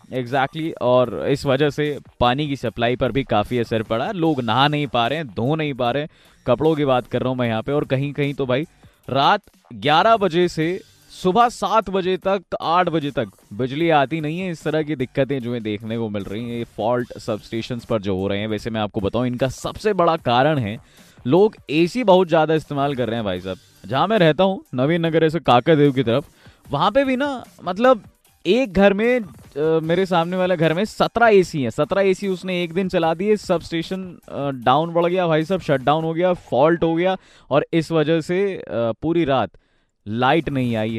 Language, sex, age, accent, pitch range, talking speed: Hindi, male, 20-39, native, 125-175 Hz, 215 wpm